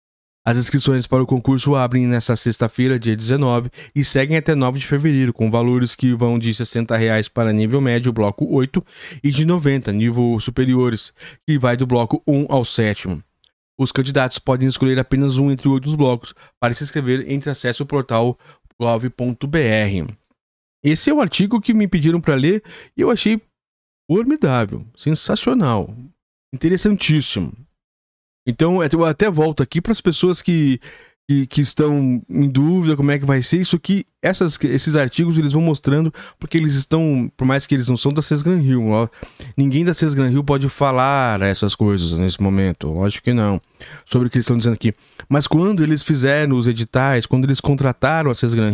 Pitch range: 120-150 Hz